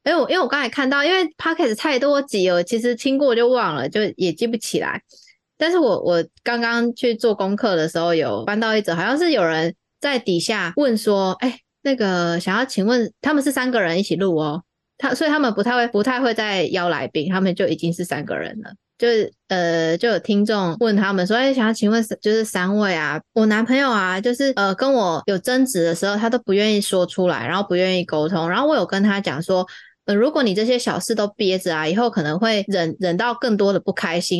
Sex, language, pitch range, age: female, Chinese, 180-240 Hz, 20-39